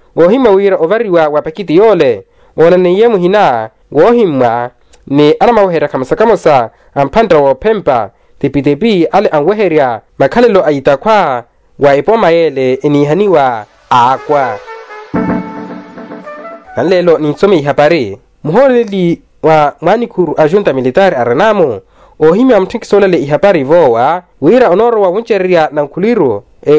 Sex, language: male, Portuguese